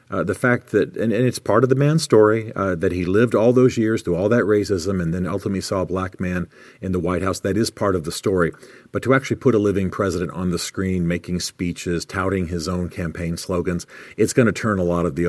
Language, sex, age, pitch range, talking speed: English, male, 40-59, 85-110 Hz, 255 wpm